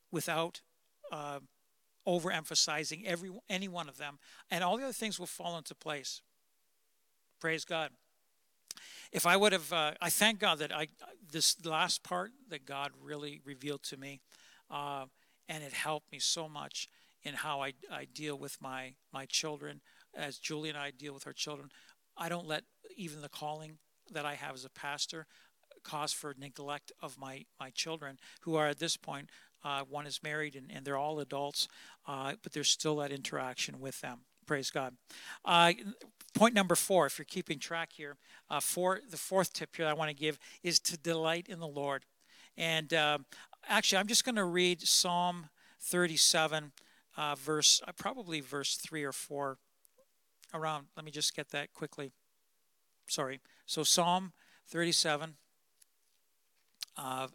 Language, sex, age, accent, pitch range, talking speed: English, male, 60-79, American, 145-170 Hz, 165 wpm